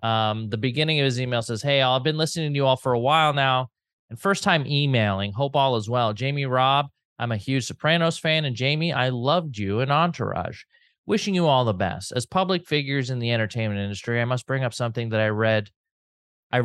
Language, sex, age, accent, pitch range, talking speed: English, male, 30-49, American, 110-145 Hz, 215 wpm